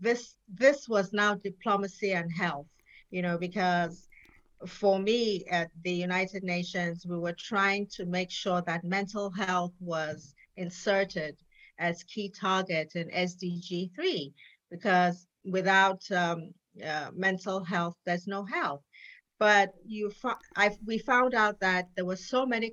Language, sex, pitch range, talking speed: English, female, 175-205 Hz, 140 wpm